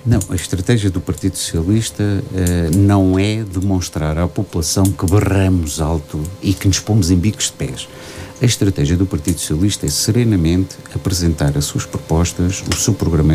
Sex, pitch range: male, 85-125 Hz